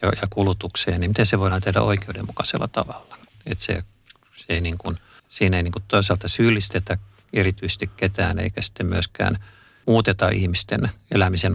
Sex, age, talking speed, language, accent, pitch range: male, 50-69, 145 wpm, Finnish, native, 95-110 Hz